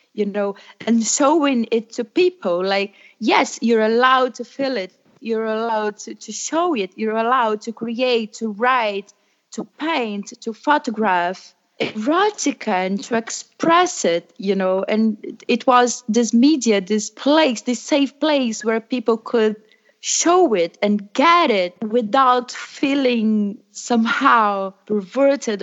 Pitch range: 200-255 Hz